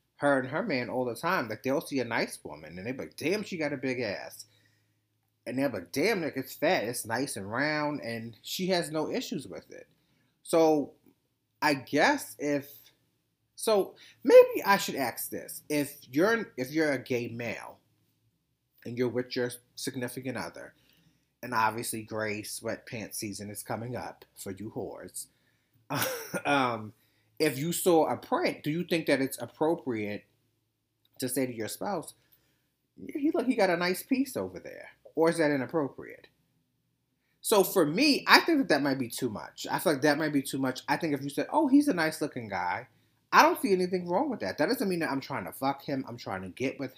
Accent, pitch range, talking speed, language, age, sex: American, 120-155 Hz, 200 wpm, English, 30-49, male